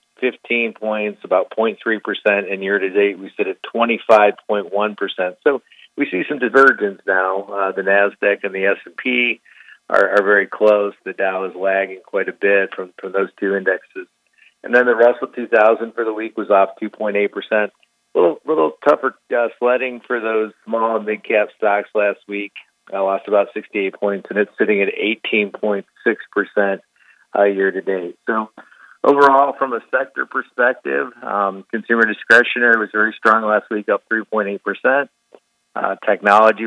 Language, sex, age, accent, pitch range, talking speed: English, male, 40-59, American, 100-115 Hz, 155 wpm